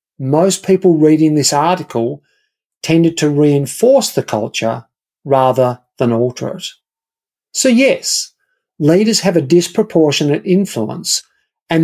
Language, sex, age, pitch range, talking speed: English, male, 50-69, 135-190 Hz, 110 wpm